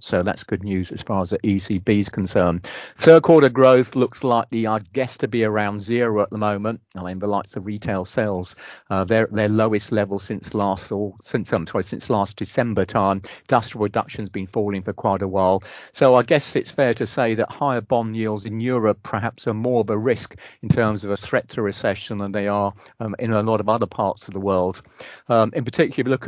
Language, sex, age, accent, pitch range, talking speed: English, male, 50-69, British, 100-115 Hz, 230 wpm